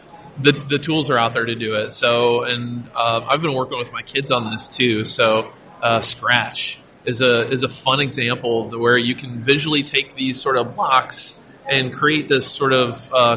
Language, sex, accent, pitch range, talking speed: English, male, American, 115-140 Hz, 210 wpm